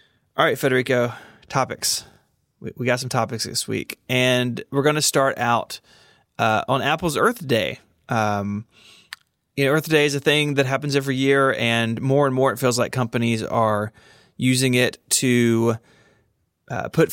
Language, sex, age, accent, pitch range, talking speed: English, male, 20-39, American, 115-135 Hz, 170 wpm